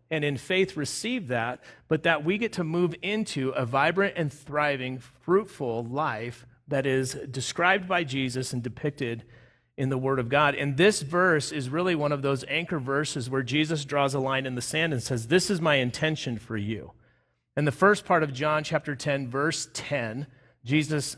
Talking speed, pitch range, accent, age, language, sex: 190 wpm, 125-165 Hz, American, 40-59, English, male